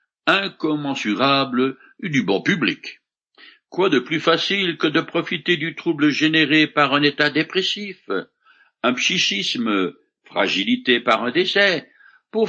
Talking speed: 125 wpm